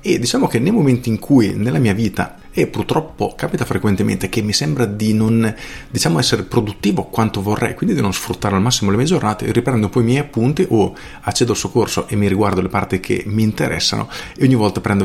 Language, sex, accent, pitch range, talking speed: Italian, male, native, 100-125 Hz, 220 wpm